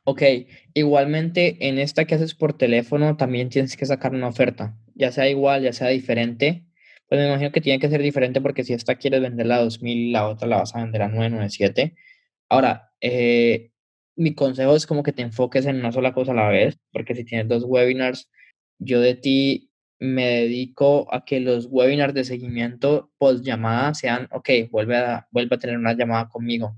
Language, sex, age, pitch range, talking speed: Spanish, male, 10-29, 120-145 Hz, 195 wpm